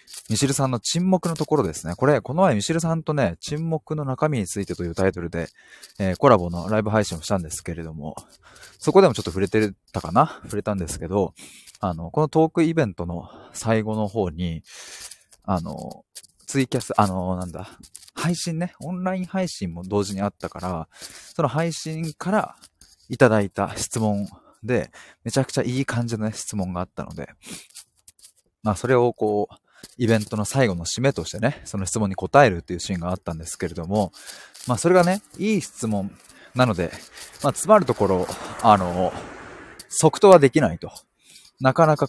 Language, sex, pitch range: Japanese, male, 90-145 Hz